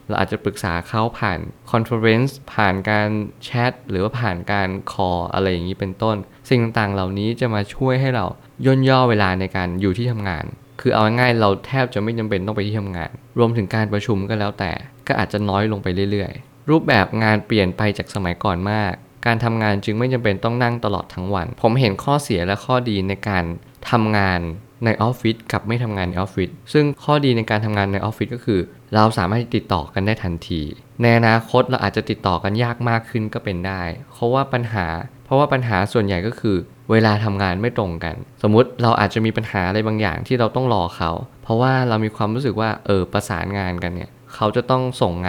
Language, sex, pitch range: Thai, male, 95-120 Hz